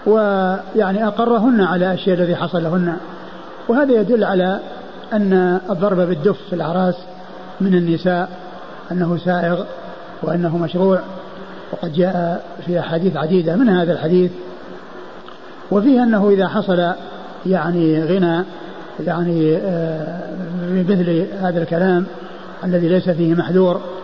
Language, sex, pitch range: Arabic, male, 175-200 Hz